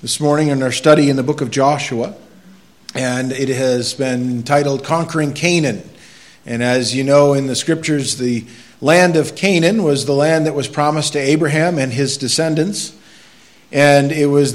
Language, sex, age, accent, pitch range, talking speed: English, male, 50-69, American, 130-160 Hz, 175 wpm